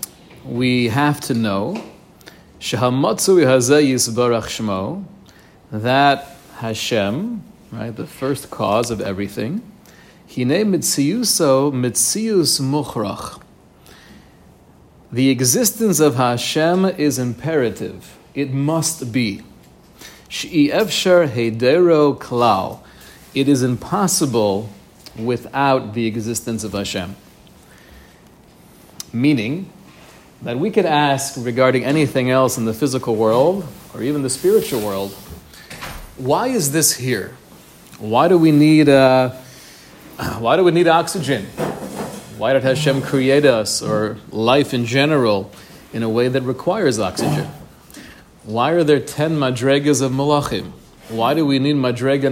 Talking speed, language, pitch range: 100 wpm, English, 120-155 Hz